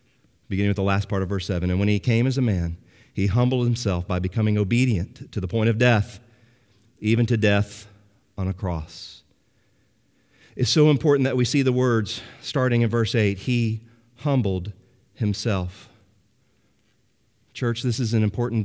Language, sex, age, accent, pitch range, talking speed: English, male, 40-59, American, 100-125 Hz, 165 wpm